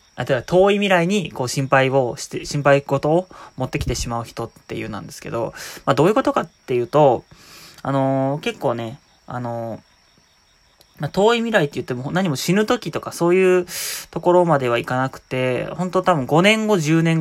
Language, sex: Japanese, male